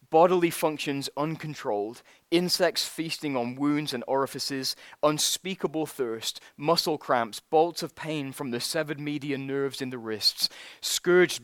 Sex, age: male, 20-39